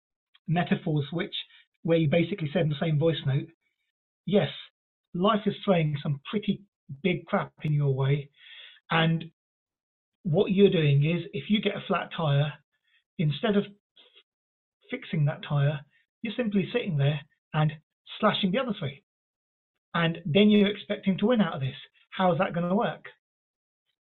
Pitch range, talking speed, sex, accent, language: 150-200 Hz, 155 wpm, male, British, English